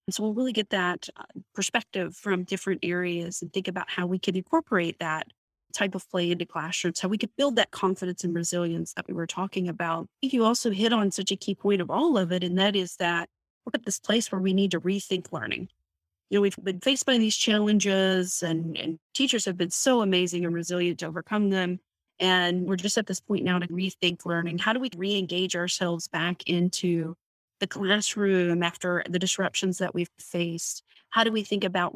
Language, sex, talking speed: English, female, 210 wpm